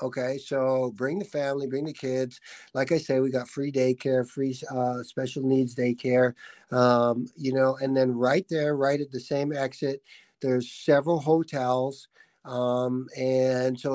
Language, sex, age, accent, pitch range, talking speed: English, male, 50-69, American, 130-155 Hz, 165 wpm